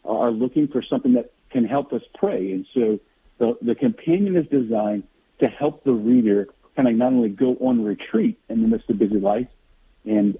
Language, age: English, 50-69